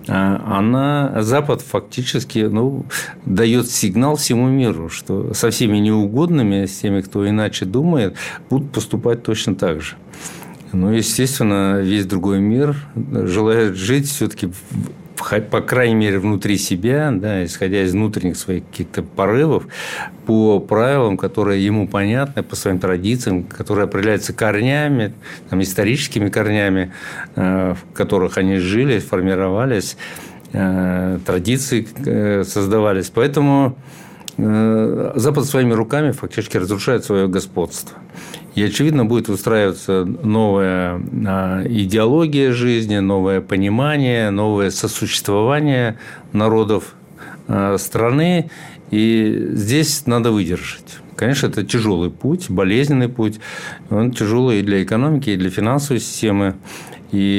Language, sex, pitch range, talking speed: Russian, male, 100-125 Hz, 110 wpm